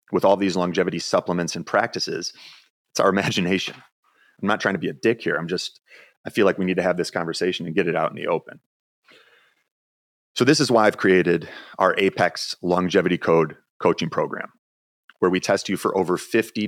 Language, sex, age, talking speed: English, male, 30-49, 200 wpm